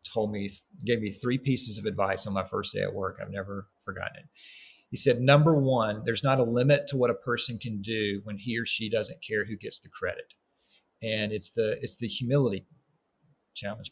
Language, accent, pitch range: English, American, 105-135 Hz